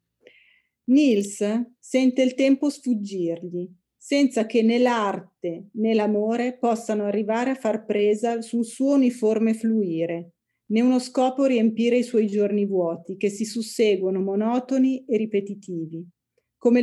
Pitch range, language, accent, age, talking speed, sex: 195-240 Hz, Italian, native, 40-59, 125 wpm, female